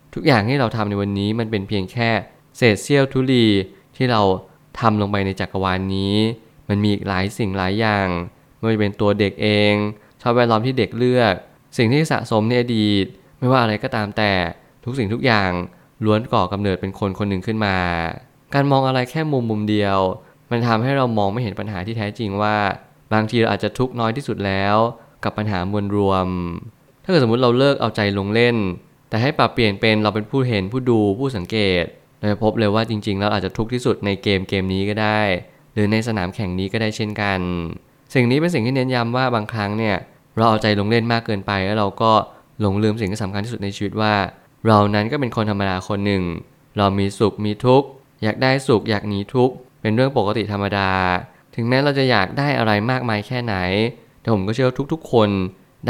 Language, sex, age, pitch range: Thai, male, 20-39, 100-125 Hz